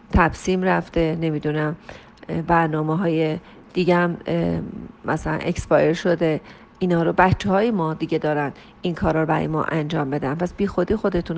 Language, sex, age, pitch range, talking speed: Persian, female, 40-59, 160-195 Hz, 130 wpm